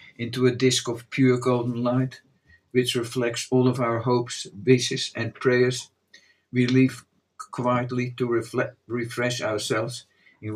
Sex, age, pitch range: male, 50-69, 115-125 Hz